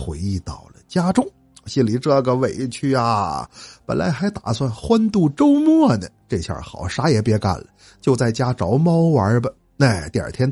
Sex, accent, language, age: male, native, Chinese, 50-69